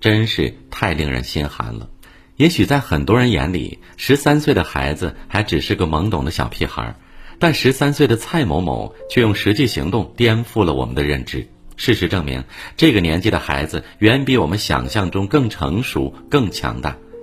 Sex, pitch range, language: male, 85-120 Hz, Chinese